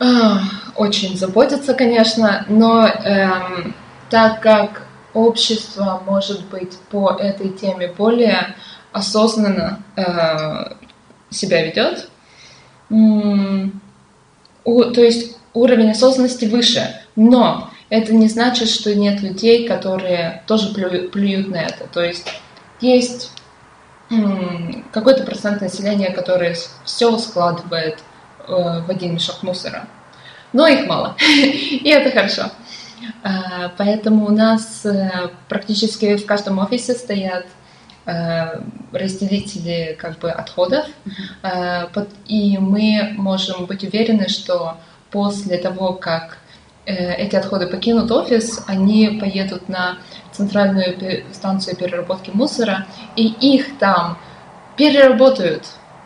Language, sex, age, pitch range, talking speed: Russian, female, 20-39, 185-225 Hz, 100 wpm